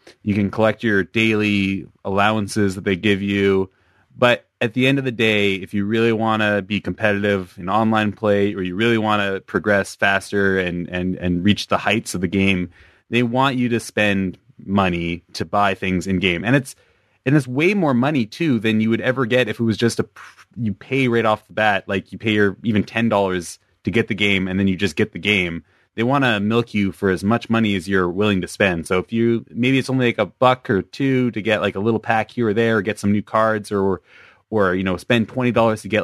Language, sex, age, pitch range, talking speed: English, male, 20-39, 95-115 Hz, 240 wpm